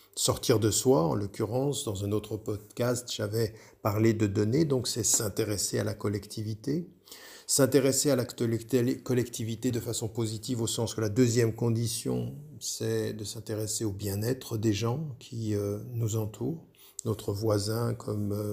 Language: French